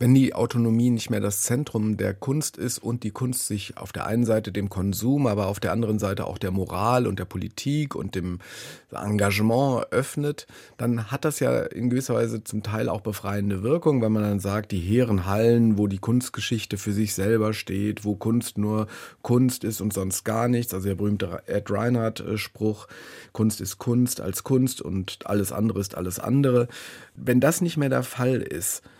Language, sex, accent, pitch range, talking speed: German, male, German, 105-125 Hz, 190 wpm